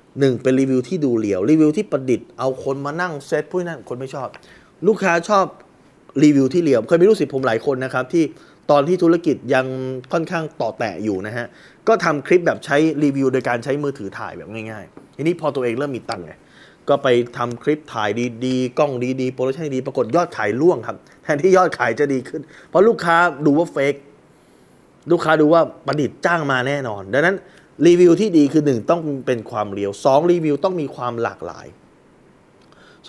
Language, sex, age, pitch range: Thai, male, 20-39, 125-160 Hz